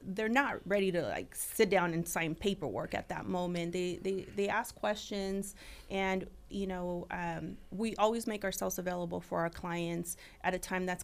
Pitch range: 175-210 Hz